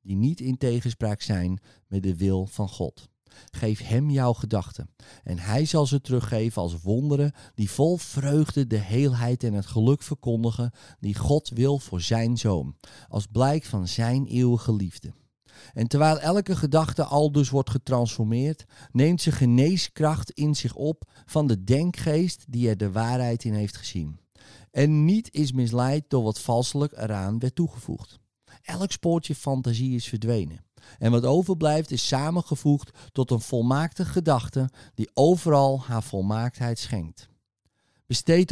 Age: 40-59